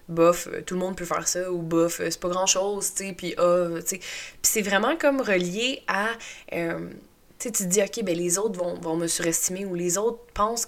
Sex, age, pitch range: female, 20-39, 170-230 Hz